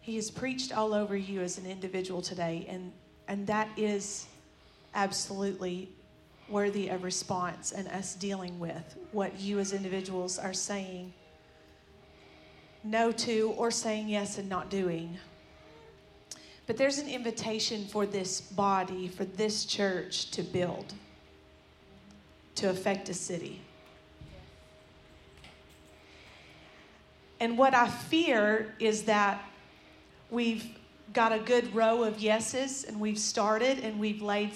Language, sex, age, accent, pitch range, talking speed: English, female, 40-59, American, 180-220 Hz, 125 wpm